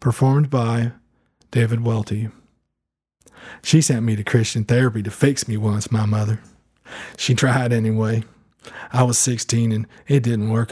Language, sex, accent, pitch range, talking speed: English, male, American, 110-130 Hz, 145 wpm